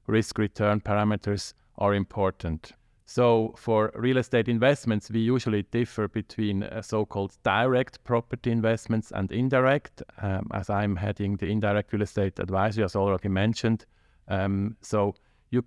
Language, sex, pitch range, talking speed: English, male, 100-115 Hz, 135 wpm